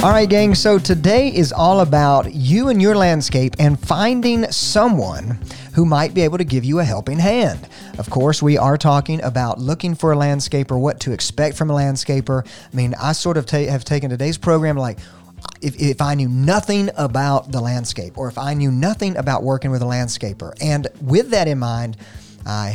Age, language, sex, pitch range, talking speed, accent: 40-59, English, male, 125-160 Hz, 200 wpm, American